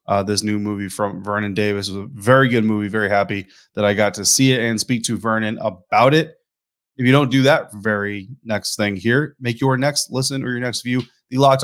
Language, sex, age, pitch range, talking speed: English, male, 30-49, 115-140 Hz, 235 wpm